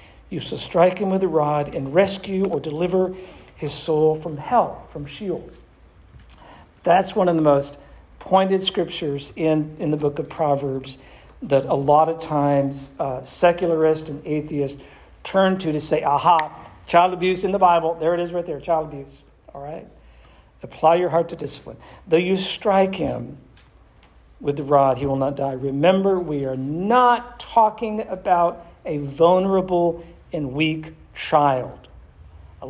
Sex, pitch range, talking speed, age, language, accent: male, 135-175 Hz, 160 wpm, 50-69, English, American